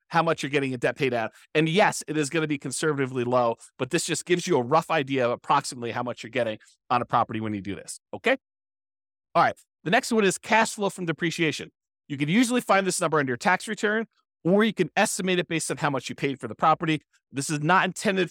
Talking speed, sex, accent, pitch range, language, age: 250 wpm, male, American, 135-170 Hz, English, 30-49